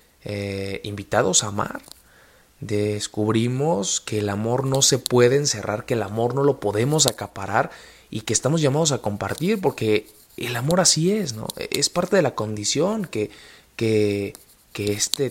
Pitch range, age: 105-130 Hz, 20-39